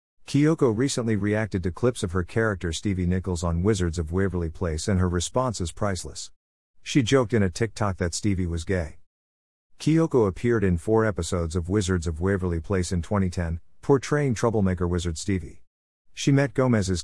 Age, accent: 50-69, American